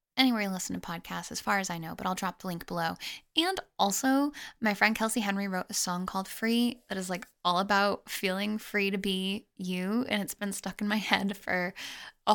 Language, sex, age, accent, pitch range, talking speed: English, female, 10-29, American, 185-240 Hz, 225 wpm